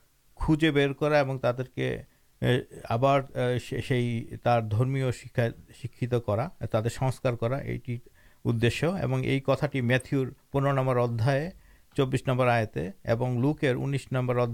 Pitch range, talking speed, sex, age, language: 120-160 Hz, 85 wpm, male, 50-69, Urdu